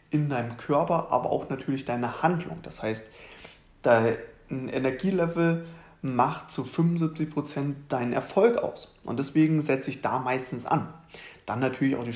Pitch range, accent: 125-160 Hz, German